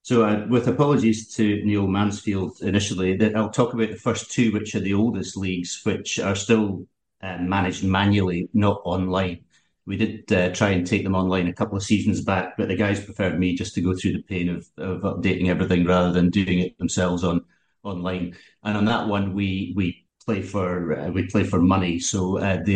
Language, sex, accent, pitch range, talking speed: English, male, British, 90-105 Hz, 210 wpm